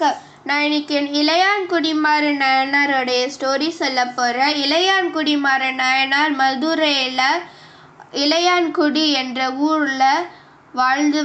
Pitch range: 265-310 Hz